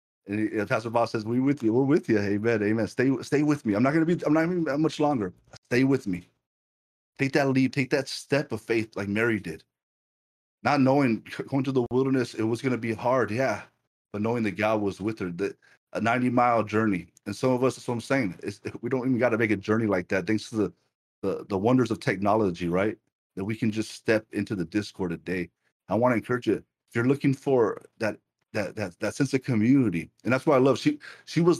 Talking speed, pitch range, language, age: 230 wpm, 110-140 Hz, English, 30-49